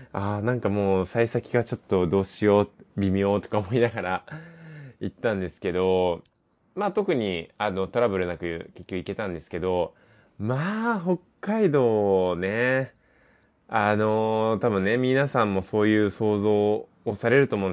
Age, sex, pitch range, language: 20-39, male, 95-130 Hz, Japanese